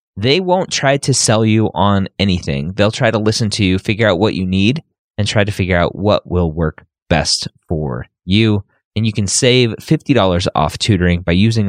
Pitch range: 85-110 Hz